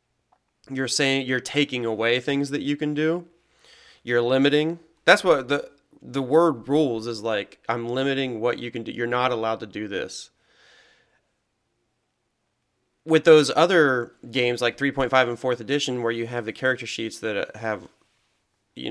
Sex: male